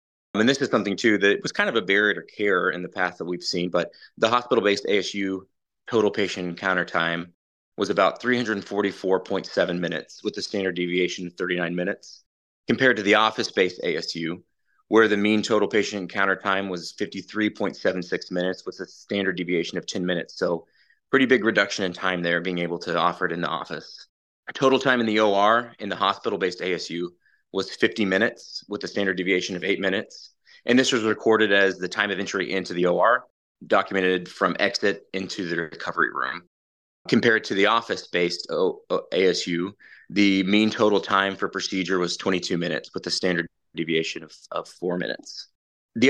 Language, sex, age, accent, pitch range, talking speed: English, male, 30-49, American, 90-105 Hz, 180 wpm